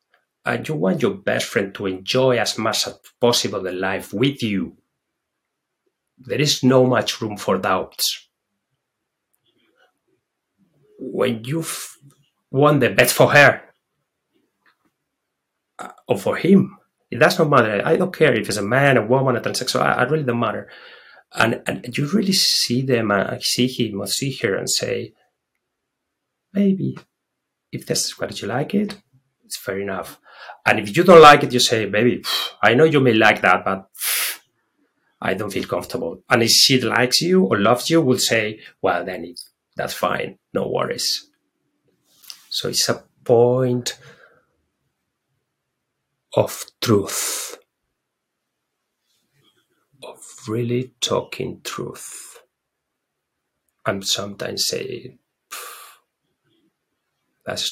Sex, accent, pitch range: male, Spanish, 110-145 Hz